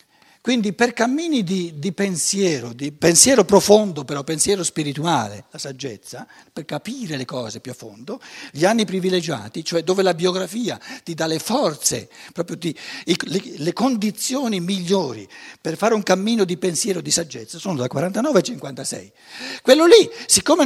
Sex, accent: male, native